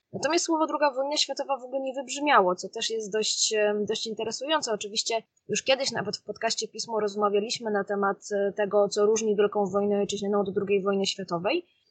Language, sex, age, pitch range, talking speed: Polish, female, 20-39, 205-230 Hz, 175 wpm